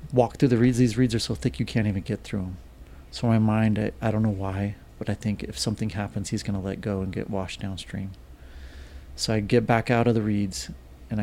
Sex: male